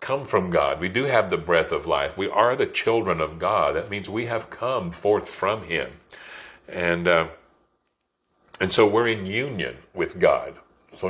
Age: 50-69